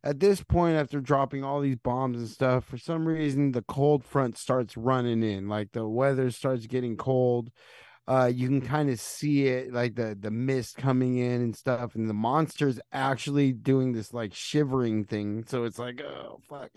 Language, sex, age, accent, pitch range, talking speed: English, male, 30-49, American, 125-160 Hz, 195 wpm